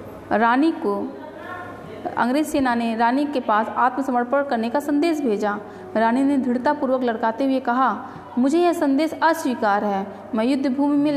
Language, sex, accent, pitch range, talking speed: Hindi, female, native, 230-280 Hz, 145 wpm